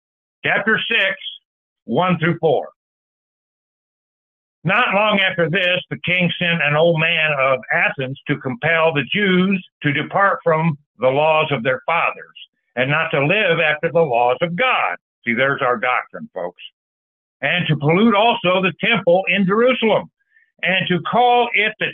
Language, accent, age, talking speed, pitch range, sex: English, American, 60-79, 155 wpm, 150-200 Hz, male